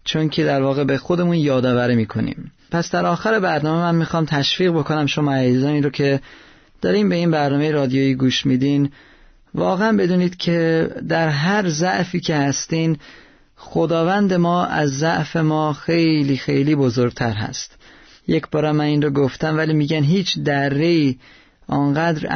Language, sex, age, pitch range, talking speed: Persian, male, 30-49, 135-165 Hz, 145 wpm